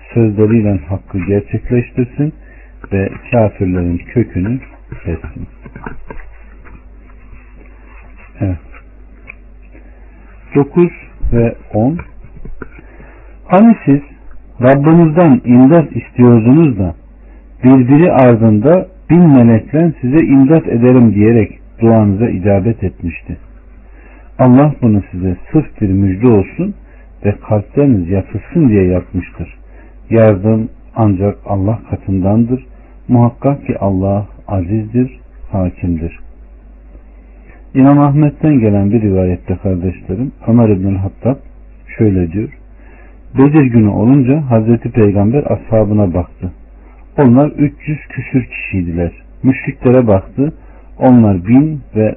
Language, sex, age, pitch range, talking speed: Turkish, male, 60-79, 95-130 Hz, 85 wpm